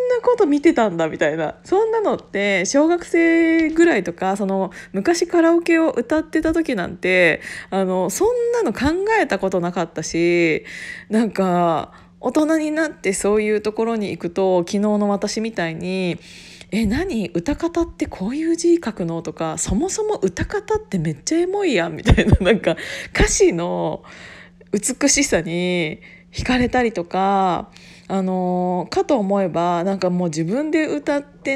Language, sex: Japanese, female